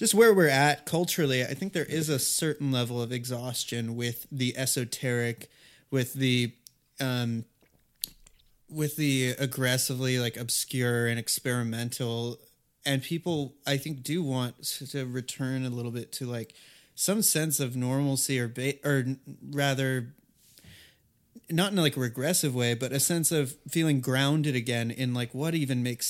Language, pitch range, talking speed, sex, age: English, 125-145 Hz, 150 wpm, male, 30-49